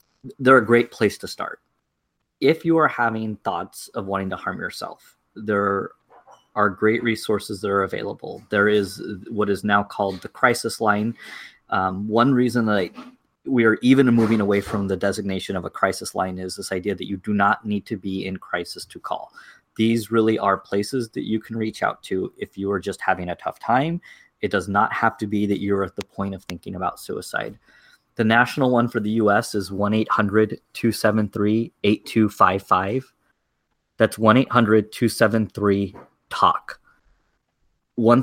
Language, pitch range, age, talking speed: English, 100-115 Hz, 20-39, 165 wpm